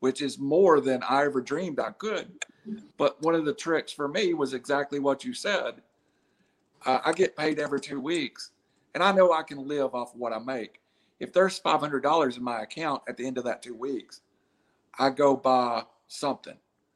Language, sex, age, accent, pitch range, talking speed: English, male, 50-69, American, 135-175 Hz, 195 wpm